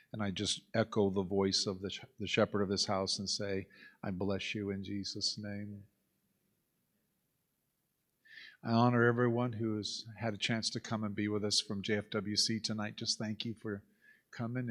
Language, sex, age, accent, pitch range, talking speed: English, male, 50-69, American, 100-120 Hz, 180 wpm